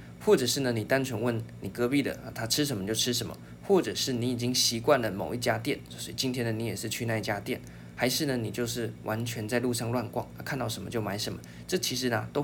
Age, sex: 20-39, male